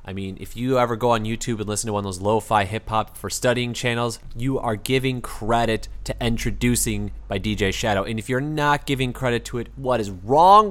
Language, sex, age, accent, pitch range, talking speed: English, male, 20-39, American, 100-120 Hz, 220 wpm